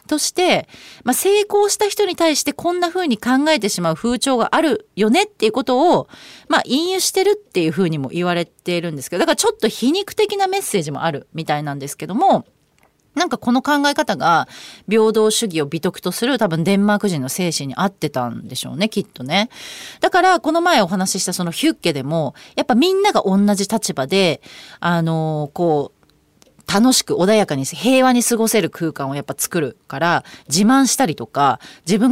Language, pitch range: Japanese, 160-260 Hz